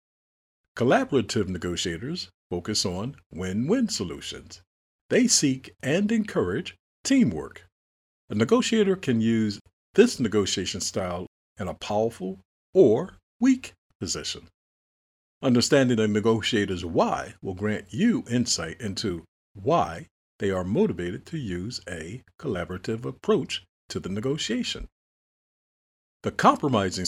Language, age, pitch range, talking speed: English, 50-69, 90-135 Hz, 105 wpm